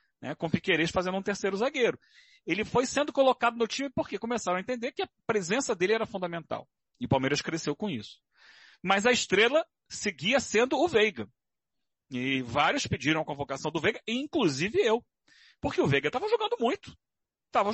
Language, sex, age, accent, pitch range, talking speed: Portuguese, male, 40-59, Brazilian, 175-255 Hz, 180 wpm